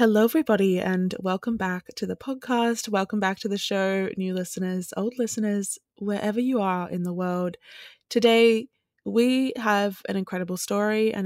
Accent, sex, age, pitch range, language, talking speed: Australian, female, 20-39, 185-220 Hz, English, 160 wpm